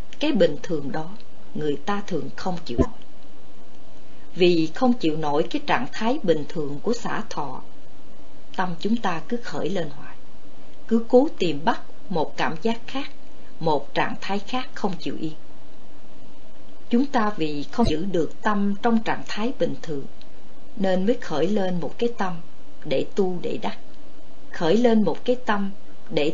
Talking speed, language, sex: 165 wpm, Vietnamese, female